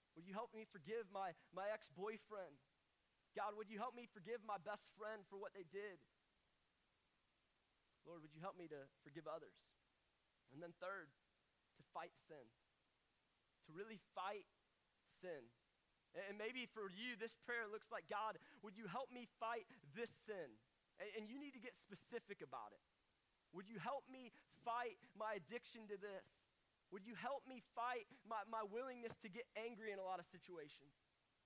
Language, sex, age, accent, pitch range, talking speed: English, male, 20-39, American, 200-240 Hz, 170 wpm